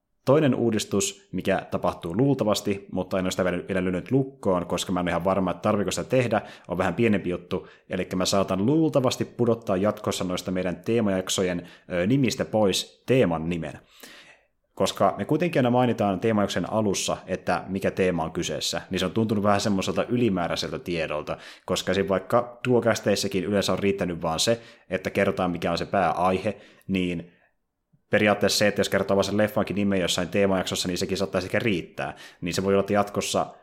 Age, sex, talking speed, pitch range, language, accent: 30-49, male, 170 wpm, 90-105 Hz, Finnish, native